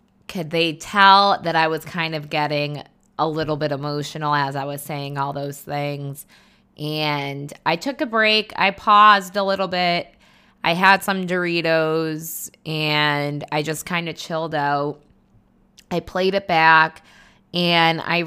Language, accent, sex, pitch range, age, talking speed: English, American, female, 150-190 Hz, 20-39, 155 wpm